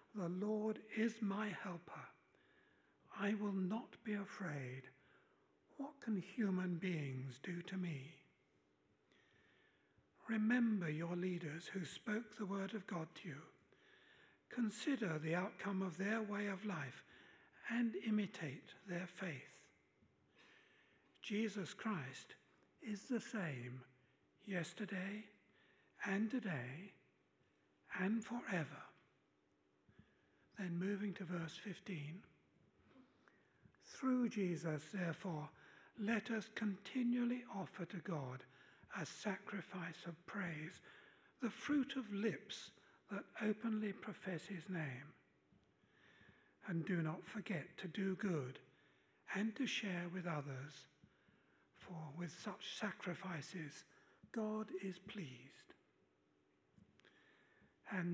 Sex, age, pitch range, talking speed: male, 60-79, 160-215 Hz, 100 wpm